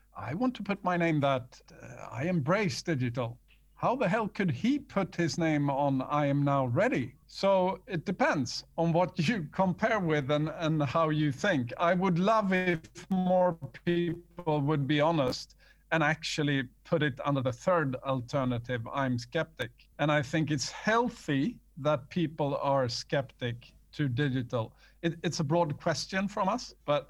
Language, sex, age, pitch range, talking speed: English, male, 50-69, 140-175 Hz, 165 wpm